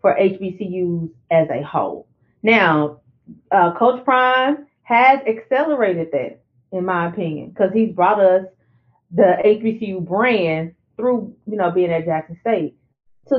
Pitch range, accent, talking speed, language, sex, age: 170-235 Hz, American, 135 wpm, English, female, 30-49